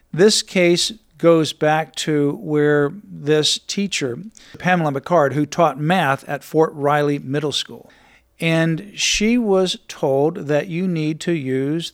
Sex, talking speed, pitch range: male, 135 wpm, 145-185 Hz